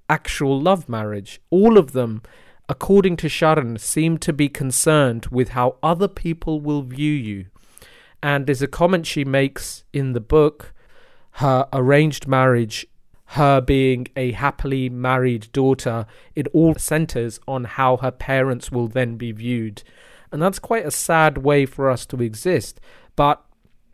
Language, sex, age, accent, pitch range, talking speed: English, male, 40-59, British, 120-150 Hz, 150 wpm